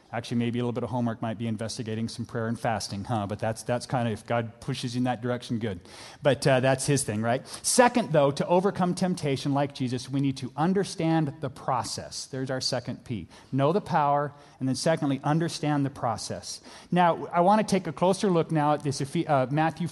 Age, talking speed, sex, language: 40-59, 220 wpm, male, English